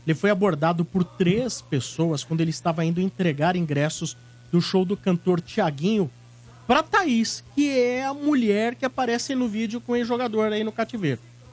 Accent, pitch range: Brazilian, 150-215 Hz